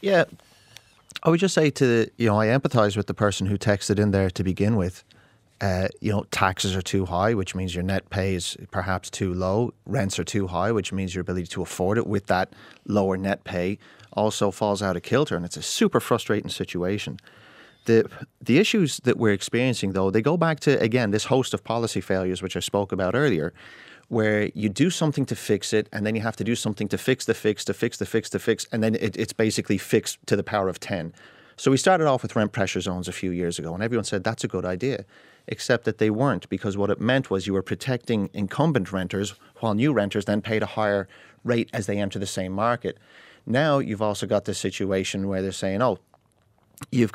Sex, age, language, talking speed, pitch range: male, 30-49, English, 225 wpm, 95-115 Hz